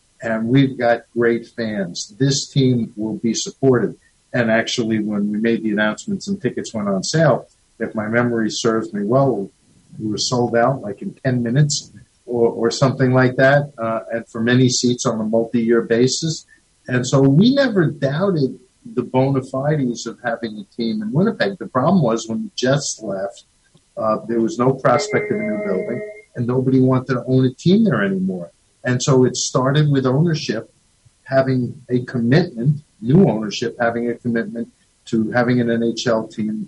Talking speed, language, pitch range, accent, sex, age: 175 wpm, English, 115-135 Hz, American, male, 50-69